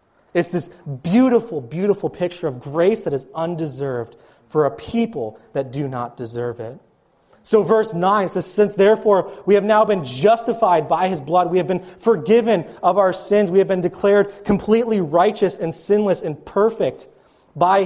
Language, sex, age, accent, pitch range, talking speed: English, male, 30-49, American, 150-205 Hz, 170 wpm